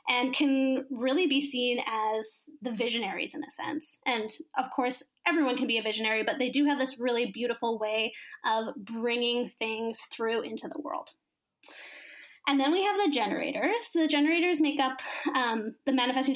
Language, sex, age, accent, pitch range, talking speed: English, female, 10-29, American, 230-290 Hz, 170 wpm